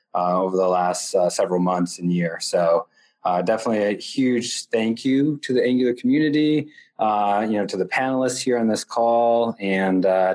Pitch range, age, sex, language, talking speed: 105-125 Hz, 20-39, male, English, 185 wpm